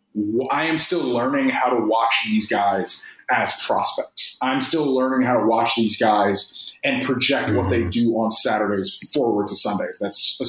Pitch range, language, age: 115-170 Hz, English, 20-39